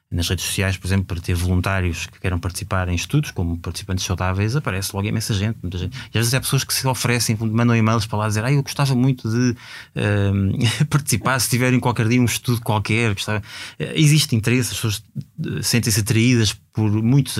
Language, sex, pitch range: Portuguese, male, 90-110 Hz